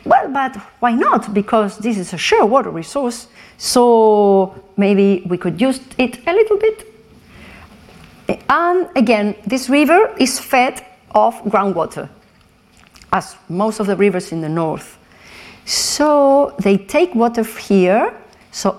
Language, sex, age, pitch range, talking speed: French, female, 40-59, 190-275 Hz, 135 wpm